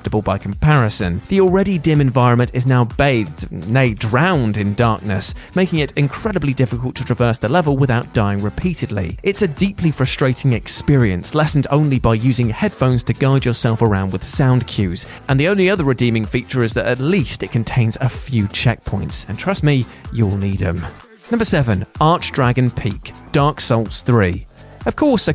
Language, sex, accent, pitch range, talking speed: English, male, British, 110-145 Hz, 170 wpm